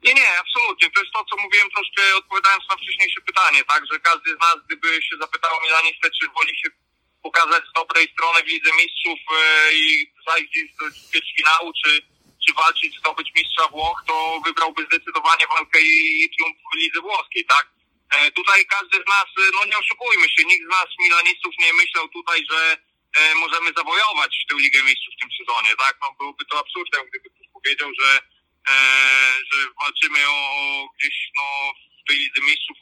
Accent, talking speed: native, 175 wpm